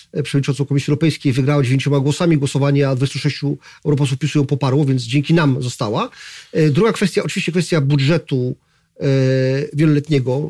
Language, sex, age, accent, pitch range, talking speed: Polish, male, 40-59, native, 135-160 Hz, 130 wpm